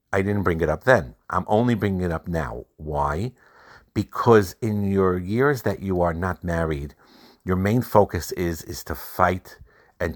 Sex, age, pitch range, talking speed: male, 50-69, 85-95 Hz, 175 wpm